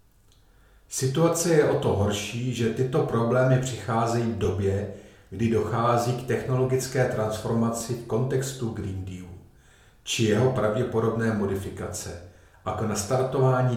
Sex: male